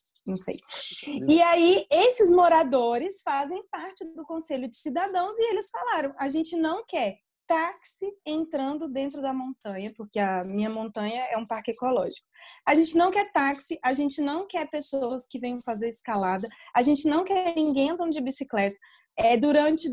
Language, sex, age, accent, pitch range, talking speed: Portuguese, female, 20-39, Brazilian, 240-330 Hz, 165 wpm